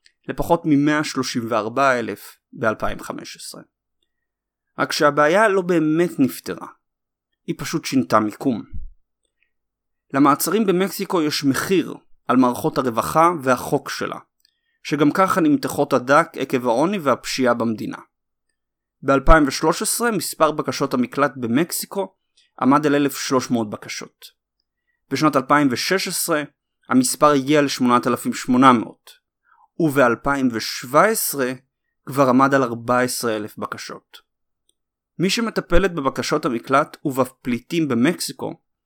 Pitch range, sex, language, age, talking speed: 130-180 Hz, male, Hebrew, 30-49, 85 wpm